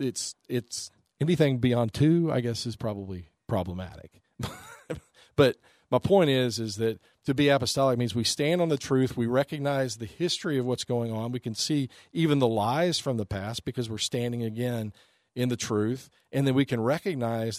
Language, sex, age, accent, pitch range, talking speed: English, male, 40-59, American, 105-130 Hz, 185 wpm